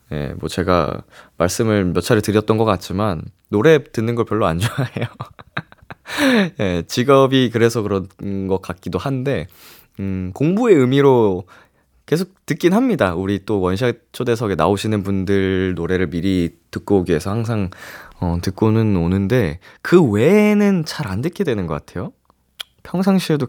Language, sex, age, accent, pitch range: Korean, male, 20-39, native, 95-140 Hz